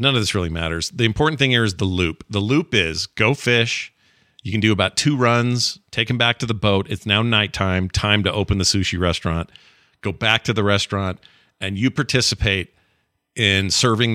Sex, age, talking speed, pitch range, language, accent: male, 40-59, 205 wpm, 100-130 Hz, English, American